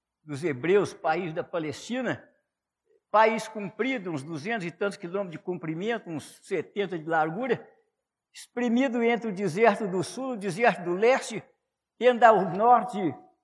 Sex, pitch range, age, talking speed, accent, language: male, 180-240 Hz, 60-79, 145 wpm, Brazilian, Portuguese